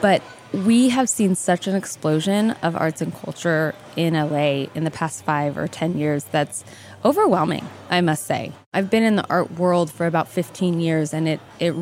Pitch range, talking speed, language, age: 170-245 Hz, 195 wpm, English, 20-39